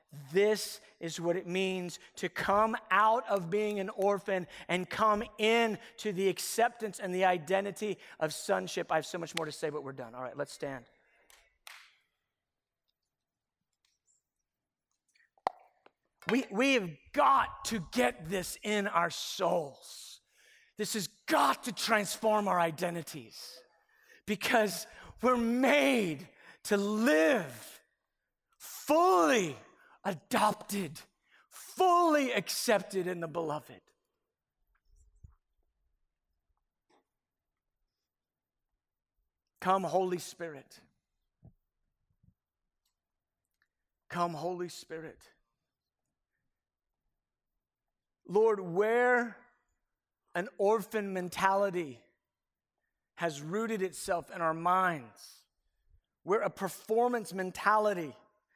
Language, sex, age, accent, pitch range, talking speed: English, male, 40-59, American, 165-215 Hz, 90 wpm